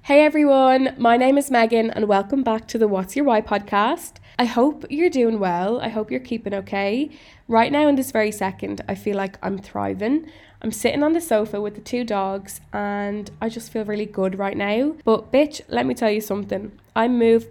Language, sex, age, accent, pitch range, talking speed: English, female, 10-29, Irish, 190-220 Hz, 215 wpm